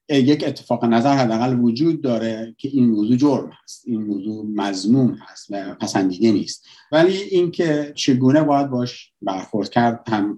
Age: 50-69